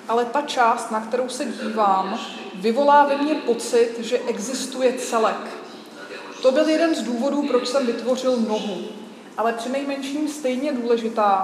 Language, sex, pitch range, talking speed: Czech, female, 220-265 Hz, 145 wpm